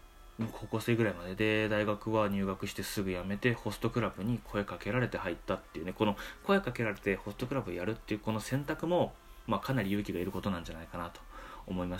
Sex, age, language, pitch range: male, 20-39, Japanese, 85-110 Hz